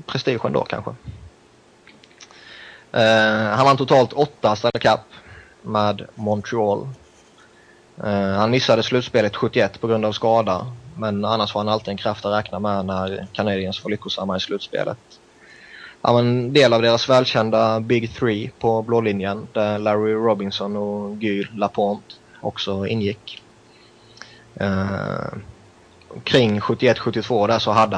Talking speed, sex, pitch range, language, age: 135 wpm, male, 100-115 Hz, Swedish, 20-39